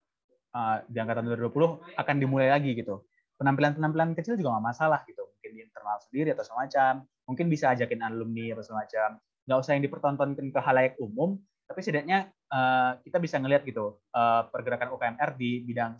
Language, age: Indonesian, 20-39